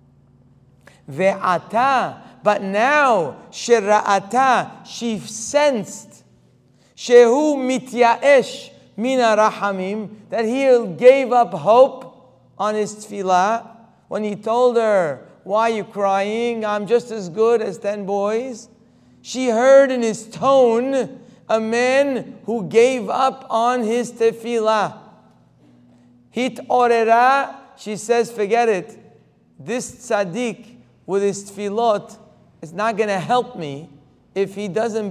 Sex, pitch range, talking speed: male, 180-235 Hz, 110 wpm